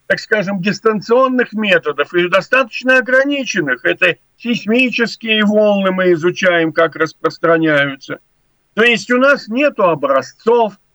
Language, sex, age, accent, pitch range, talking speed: Russian, male, 50-69, native, 160-230 Hz, 110 wpm